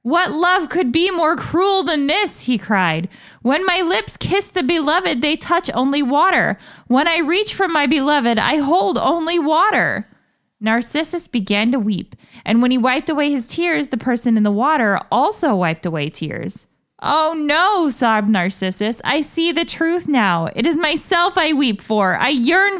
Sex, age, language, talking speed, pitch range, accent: female, 20-39, English, 175 wpm, 210-325 Hz, American